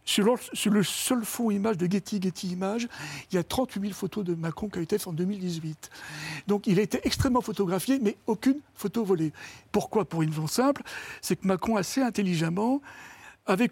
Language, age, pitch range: French, 60-79, 185-230 Hz